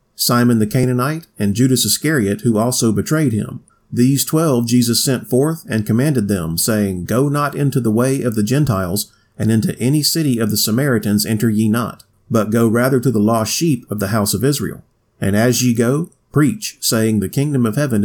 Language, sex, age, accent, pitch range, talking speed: English, male, 40-59, American, 110-135 Hz, 195 wpm